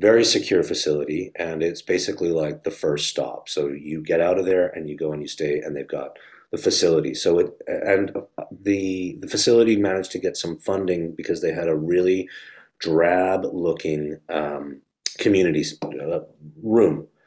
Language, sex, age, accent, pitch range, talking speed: English, male, 30-49, American, 80-105 Hz, 170 wpm